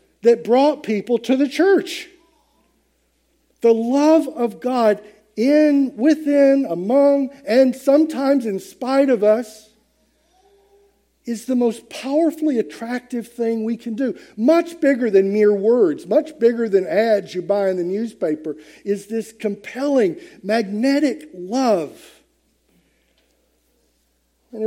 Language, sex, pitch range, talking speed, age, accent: English, male, 175-275 Hz, 115 wpm, 50-69, American